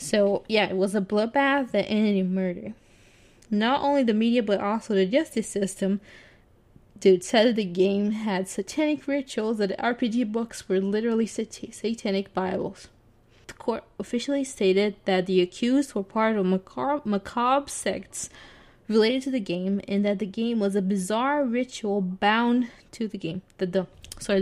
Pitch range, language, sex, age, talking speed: 190-230 Hz, English, female, 20-39, 160 wpm